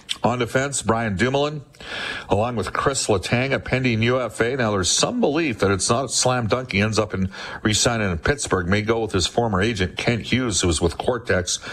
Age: 50-69